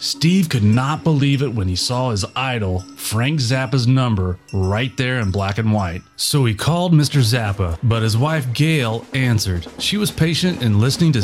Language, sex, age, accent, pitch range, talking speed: English, male, 30-49, American, 110-145 Hz, 185 wpm